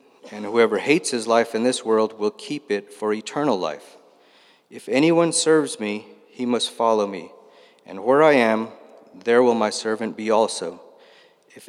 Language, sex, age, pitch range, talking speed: English, male, 40-59, 105-140 Hz, 170 wpm